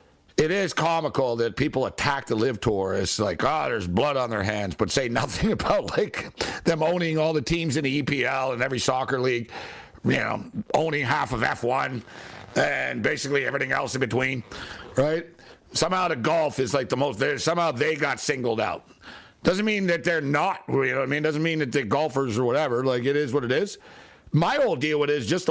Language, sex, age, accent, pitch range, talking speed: English, male, 60-79, American, 135-170 Hz, 210 wpm